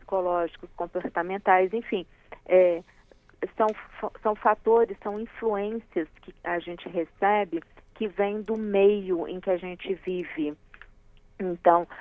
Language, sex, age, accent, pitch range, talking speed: Portuguese, female, 40-59, Brazilian, 170-210 Hz, 110 wpm